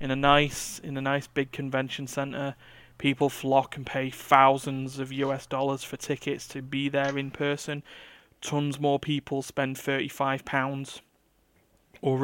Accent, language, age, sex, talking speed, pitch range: British, English, 20-39, male, 150 wpm, 130-145 Hz